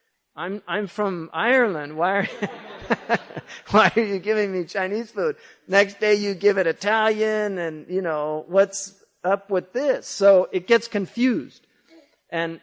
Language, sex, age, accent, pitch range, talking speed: English, male, 40-59, American, 180-225 Hz, 145 wpm